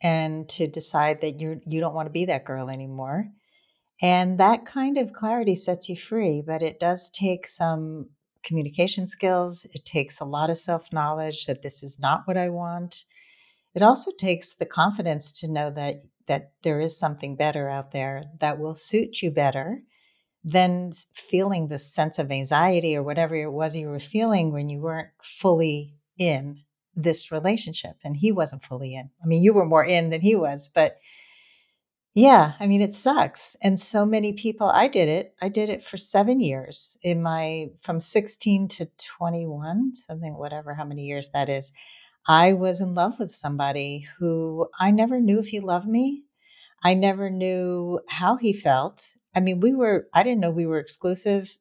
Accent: American